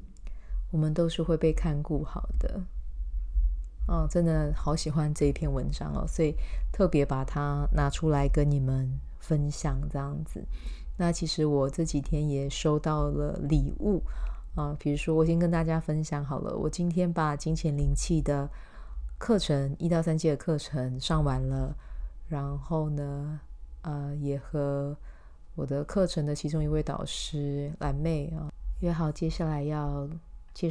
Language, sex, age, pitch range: Chinese, female, 30-49, 145-170 Hz